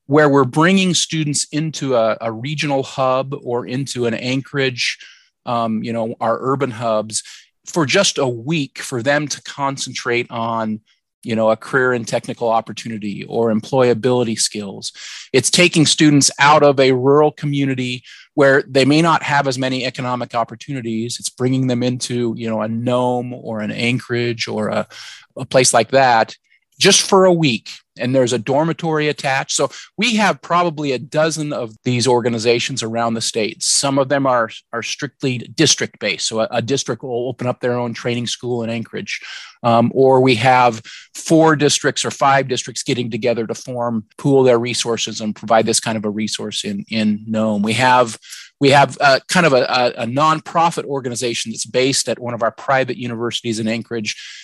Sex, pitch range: male, 115-140 Hz